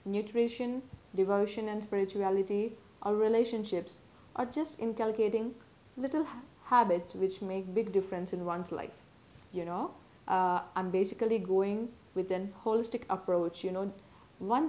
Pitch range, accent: 190-235 Hz, Indian